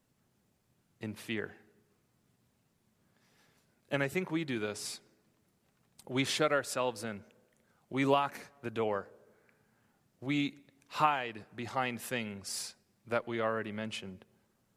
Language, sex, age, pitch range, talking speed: English, male, 30-49, 115-140 Hz, 100 wpm